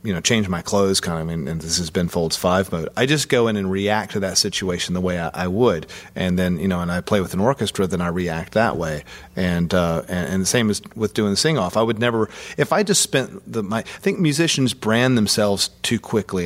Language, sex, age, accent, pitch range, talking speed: English, male, 40-59, American, 90-110 Hz, 265 wpm